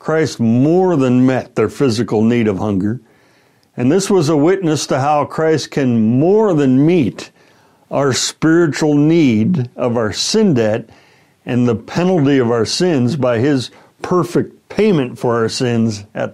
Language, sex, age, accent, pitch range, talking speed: English, male, 60-79, American, 115-155 Hz, 155 wpm